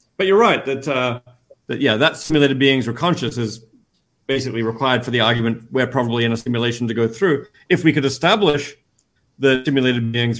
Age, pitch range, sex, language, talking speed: 40-59, 115-145 Hz, male, English, 190 wpm